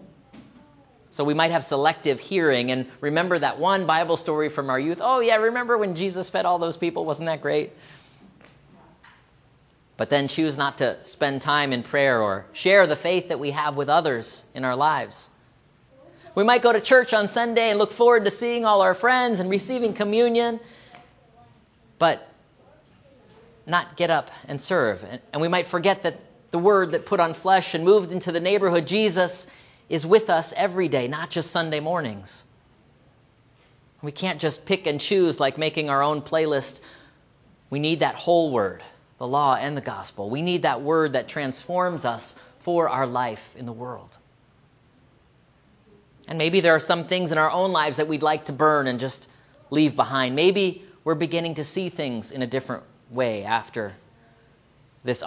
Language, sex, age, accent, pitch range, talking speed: English, male, 40-59, American, 135-180 Hz, 175 wpm